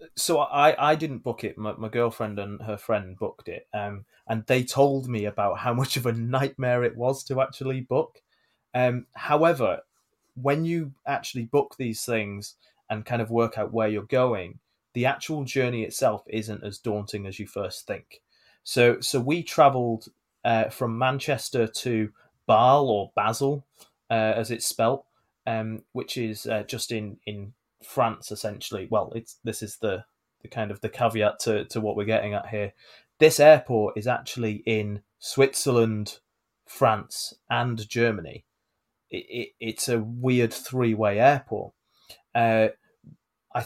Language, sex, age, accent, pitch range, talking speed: English, male, 20-39, British, 110-130 Hz, 160 wpm